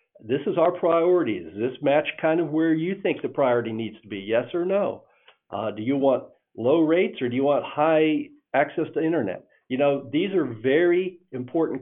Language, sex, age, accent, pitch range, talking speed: English, male, 50-69, American, 120-160 Hz, 200 wpm